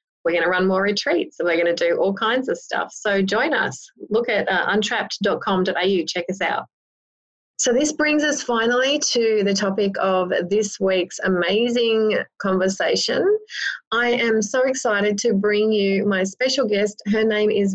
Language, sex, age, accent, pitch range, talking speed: English, female, 20-39, Australian, 185-235 Hz, 170 wpm